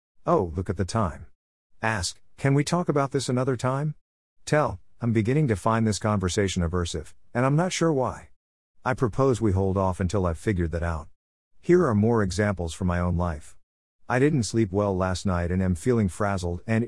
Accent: American